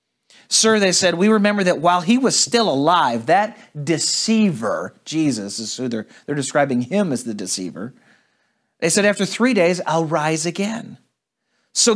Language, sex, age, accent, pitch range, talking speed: English, male, 40-59, American, 135-215 Hz, 160 wpm